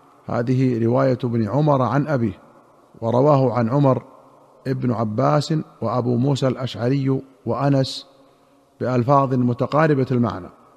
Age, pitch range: 50-69, 125-145 Hz